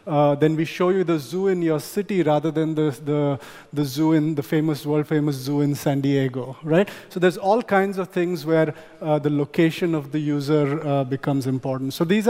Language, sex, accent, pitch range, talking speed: German, male, Indian, 145-165 Hz, 215 wpm